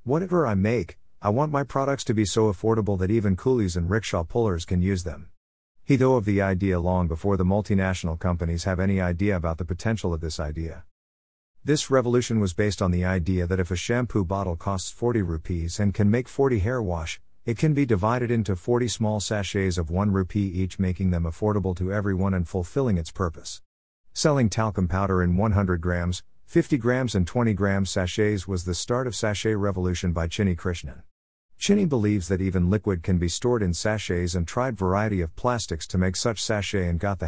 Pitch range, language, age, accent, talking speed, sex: 90-115 Hz, English, 50-69, American, 200 wpm, male